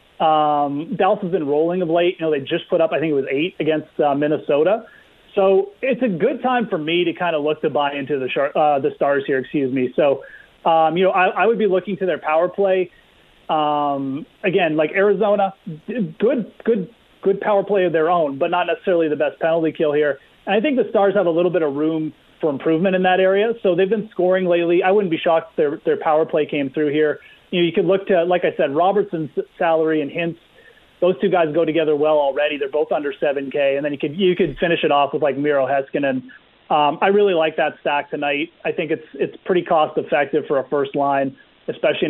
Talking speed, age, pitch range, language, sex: 230 wpm, 30-49, 150-190 Hz, English, male